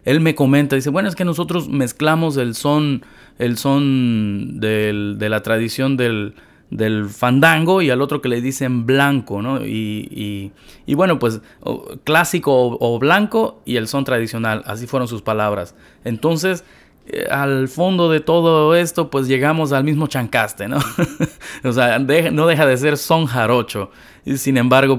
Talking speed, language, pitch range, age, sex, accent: 170 wpm, Spanish, 110-150 Hz, 30-49, male, Mexican